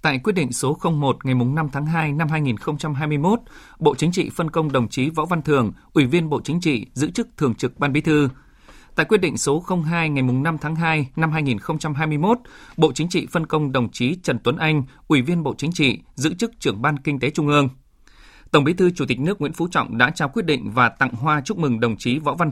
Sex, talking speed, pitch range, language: male, 235 wpm, 125-160 Hz, Vietnamese